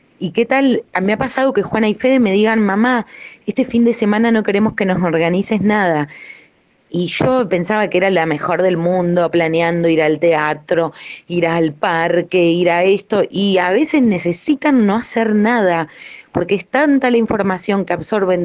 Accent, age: Argentinian, 30-49